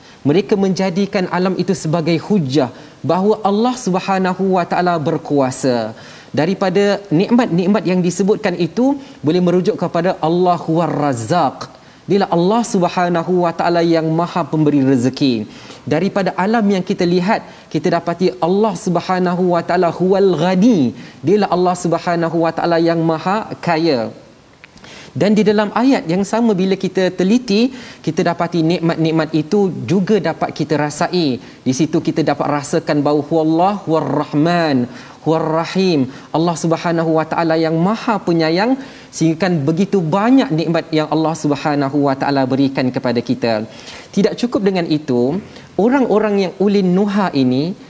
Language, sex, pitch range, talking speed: Malayalam, male, 160-195 Hz, 135 wpm